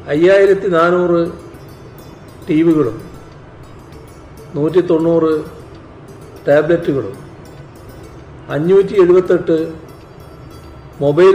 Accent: native